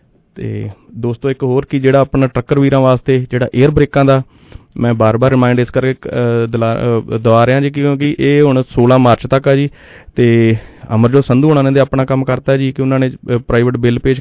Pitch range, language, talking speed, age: 120-135 Hz, English, 175 wpm, 30-49